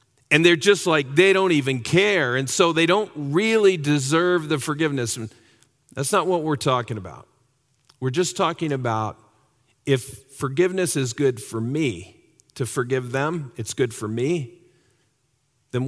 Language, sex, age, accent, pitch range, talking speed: English, male, 50-69, American, 120-155 Hz, 155 wpm